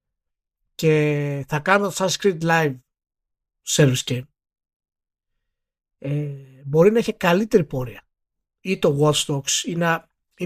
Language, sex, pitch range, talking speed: Greek, male, 135-185 Hz, 125 wpm